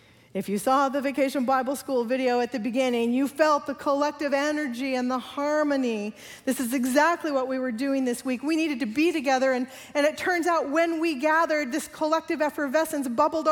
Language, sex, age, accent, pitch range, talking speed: English, female, 40-59, American, 265-320 Hz, 200 wpm